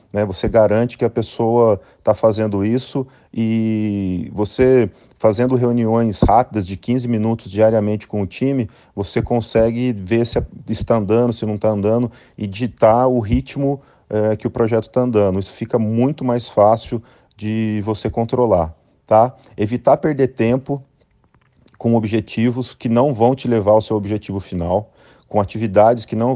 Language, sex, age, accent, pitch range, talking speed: Portuguese, male, 40-59, Brazilian, 105-120 Hz, 150 wpm